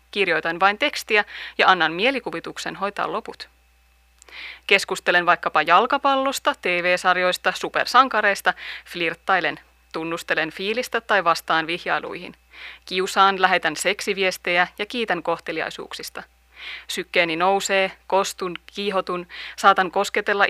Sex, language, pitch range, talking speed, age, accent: female, Finnish, 175-210 Hz, 90 wpm, 30-49, native